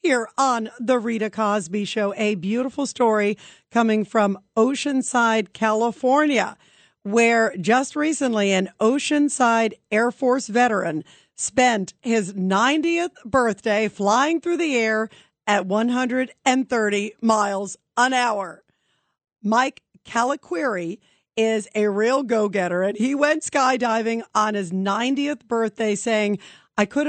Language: English